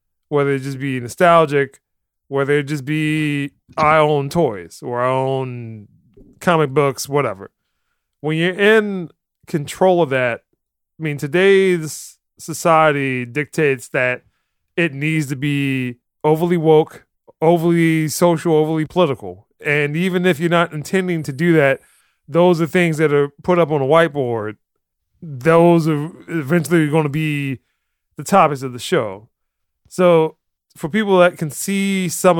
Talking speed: 145 wpm